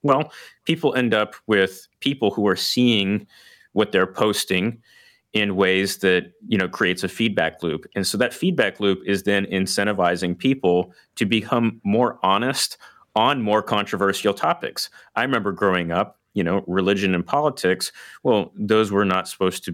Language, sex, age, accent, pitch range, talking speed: English, male, 30-49, American, 95-110 Hz, 160 wpm